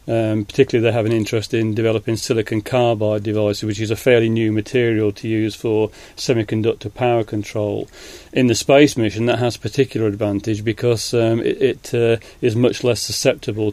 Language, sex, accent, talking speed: English, male, British, 175 wpm